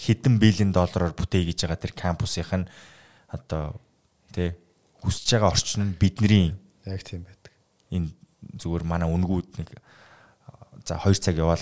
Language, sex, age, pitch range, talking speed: English, male, 20-39, 90-110 Hz, 90 wpm